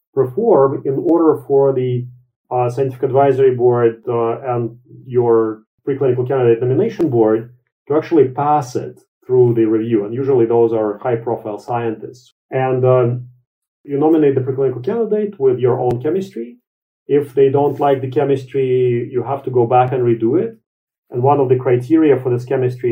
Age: 40-59